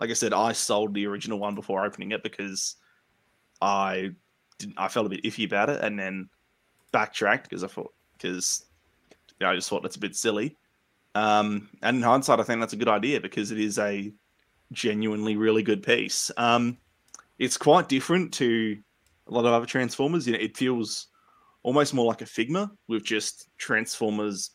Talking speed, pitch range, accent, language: 190 wpm, 100-115 Hz, Australian, English